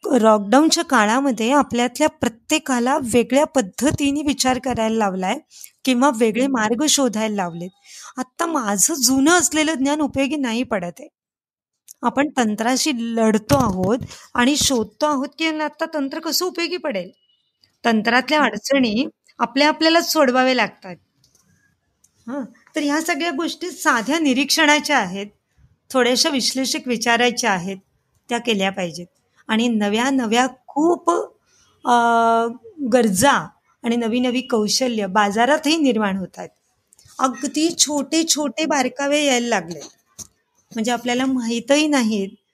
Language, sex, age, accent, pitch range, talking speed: Marathi, female, 30-49, native, 230-290 Hz, 115 wpm